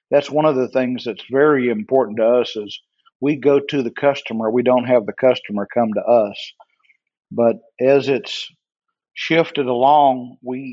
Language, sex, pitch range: English, male, 120-140 Hz